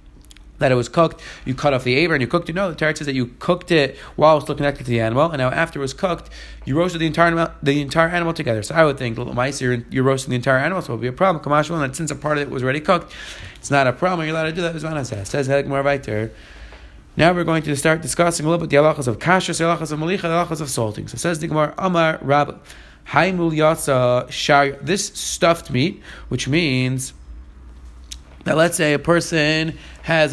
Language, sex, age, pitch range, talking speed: English, male, 30-49, 130-175 Hz, 230 wpm